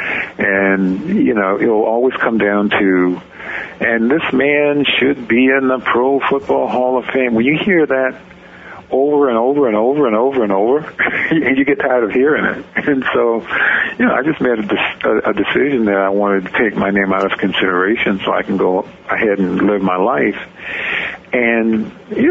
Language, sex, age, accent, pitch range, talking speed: English, male, 50-69, American, 95-125 Hz, 190 wpm